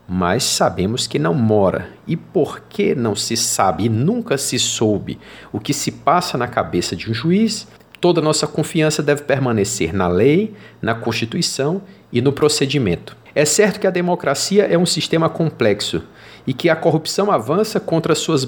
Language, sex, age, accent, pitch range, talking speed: Portuguese, male, 50-69, Brazilian, 115-165 Hz, 170 wpm